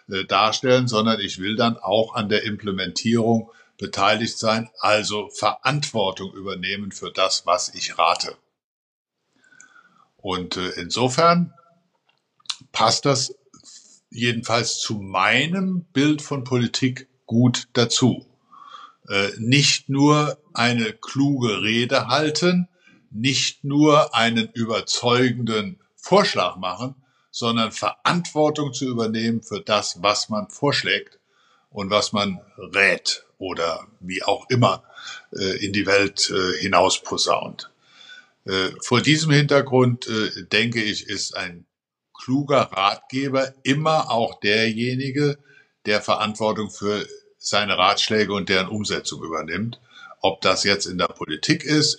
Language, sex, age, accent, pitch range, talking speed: German, male, 60-79, German, 105-140 Hz, 105 wpm